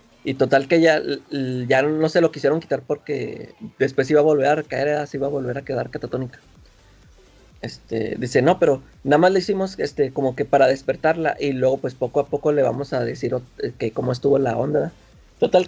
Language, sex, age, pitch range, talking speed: Spanish, male, 30-49, 130-160 Hz, 205 wpm